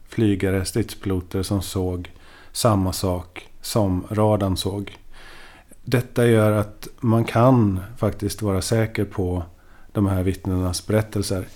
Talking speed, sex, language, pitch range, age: 115 wpm, male, Swedish, 95-110 Hz, 40-59